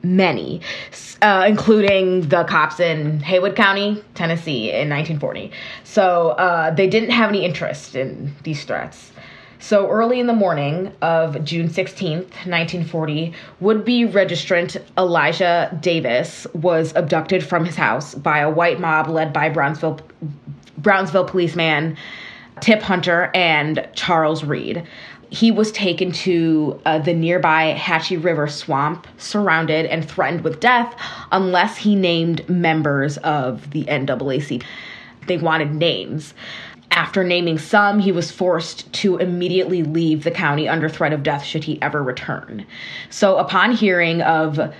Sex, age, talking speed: female, 20-39, 135 wpm